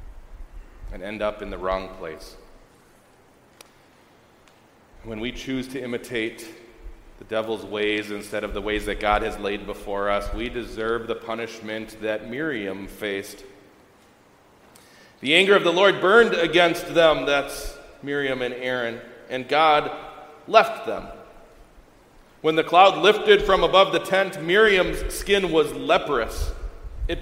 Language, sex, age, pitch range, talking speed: English, male, 40-59, 110-170 Hz, 135 wpm